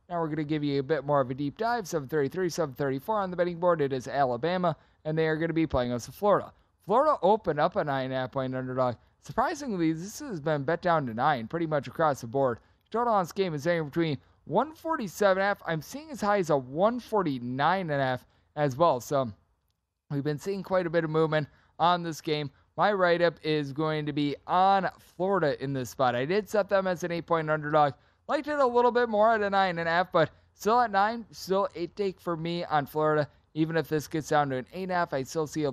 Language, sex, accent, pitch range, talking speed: English, male, American, 135-175 Hz, 240 wpm